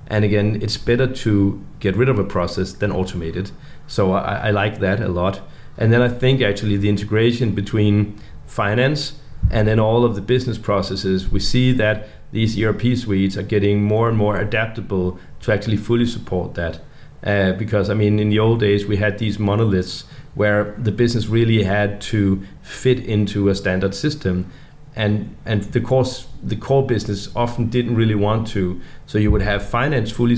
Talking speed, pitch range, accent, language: 185 wpm, 100-120 Hz, native, Danish